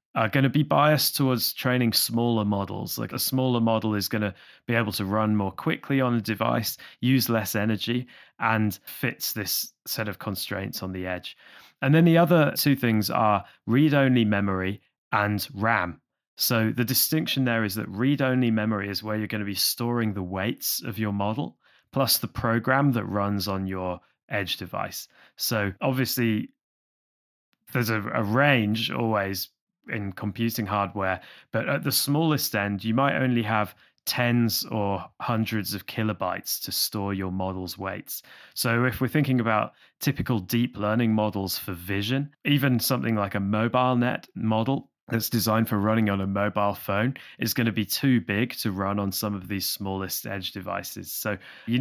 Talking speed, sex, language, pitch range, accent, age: 175 wpm, male, English, 100-125 Hz, British, 20-39